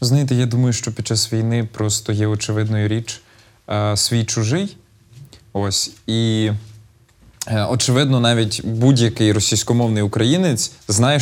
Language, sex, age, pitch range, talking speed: Ukrainian, male, 20-39, 110-145 Hz, 125 wpm